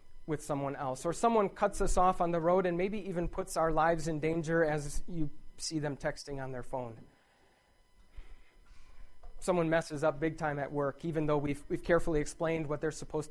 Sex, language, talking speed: male, English, 195 wpm